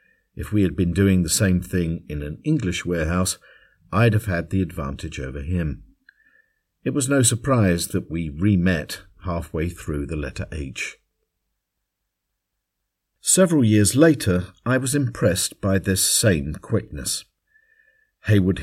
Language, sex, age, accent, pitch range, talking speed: English, male, 50-69, British, 85-110 Hz, 135 wpm